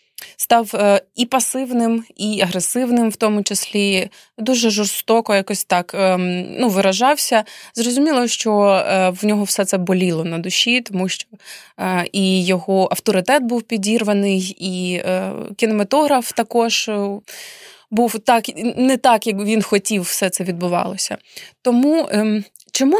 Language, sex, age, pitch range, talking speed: Ukrainian, female, 20-39, 195-235 Hz, 115 wpm